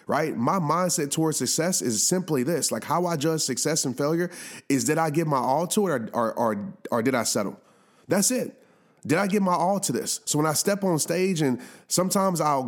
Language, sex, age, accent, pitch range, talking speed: English, male, 30-49, American, 140-175 Hz, 225 wpm